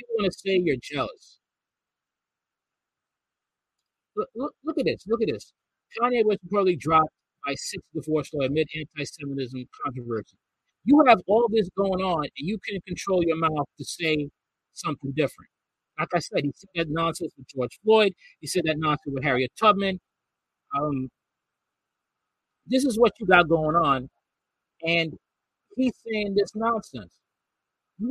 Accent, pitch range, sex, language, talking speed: American, 135-180 Hz, male, English, 155 wpm